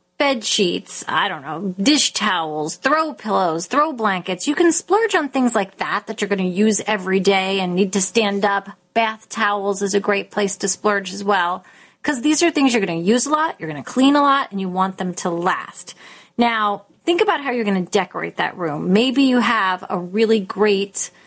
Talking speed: 220 wpm